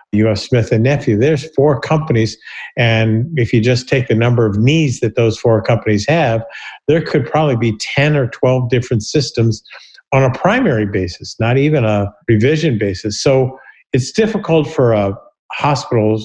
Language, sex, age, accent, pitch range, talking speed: English, male, 50-69, American, 110-140 Hz, 165 wpm